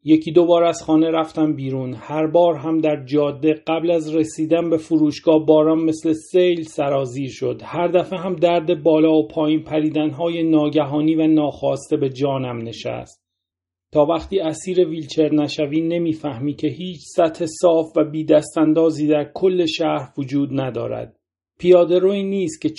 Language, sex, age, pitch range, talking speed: Persian, male, 40-59, 140-165 Hz, 155 wpm